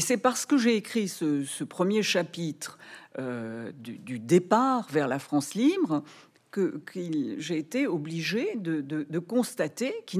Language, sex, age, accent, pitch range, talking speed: French, female, 60-79, French, 155-245 Hz, 165 wpm